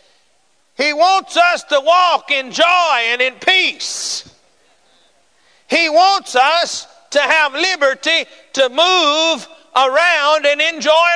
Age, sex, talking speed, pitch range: 50-69, male, 115 wpm, 290-360 Hz